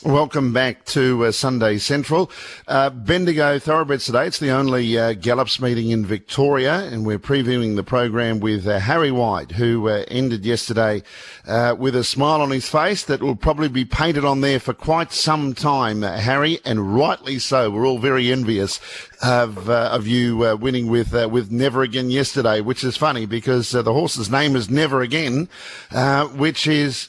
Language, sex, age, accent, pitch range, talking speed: English, male, 50-69, Australian, 120-145 Hz, 185 wpm